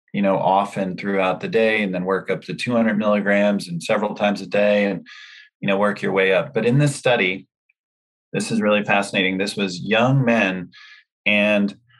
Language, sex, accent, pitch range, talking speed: English, male, American, 95-110 Hz, 190 wpm